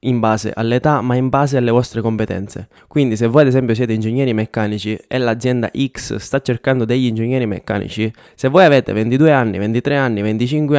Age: 20-39